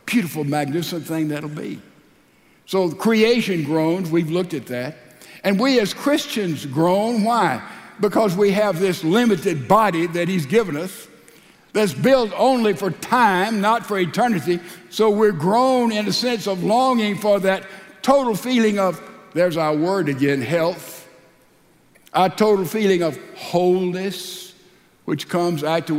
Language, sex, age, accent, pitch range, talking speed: English, male, 60-79, American, 165-225 Hz, 145 wpm